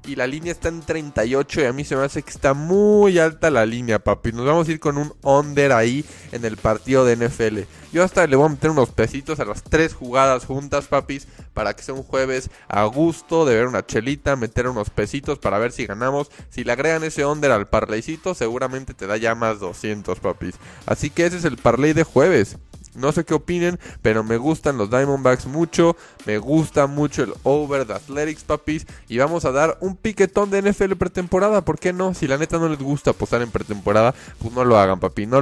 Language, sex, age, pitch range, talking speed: Spanish, male, 20-39, 115-160 Hz, 220 wpm